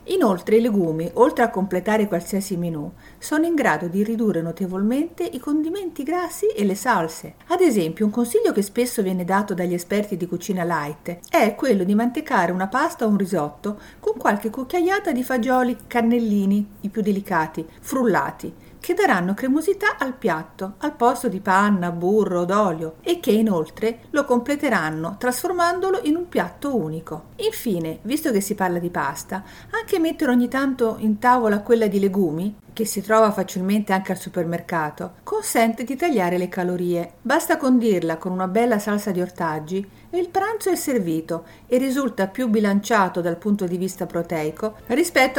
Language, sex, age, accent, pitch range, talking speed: Italian, female, 50-69, native, 185-260 Hz, 165 wpm